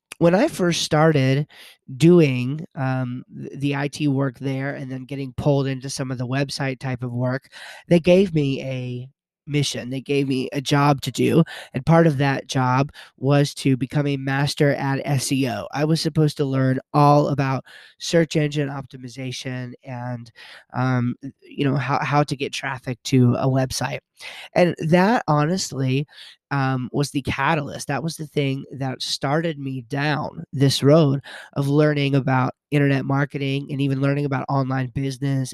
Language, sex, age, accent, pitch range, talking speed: English, male, 30-49, American, 130-145 Hz, 160 wpm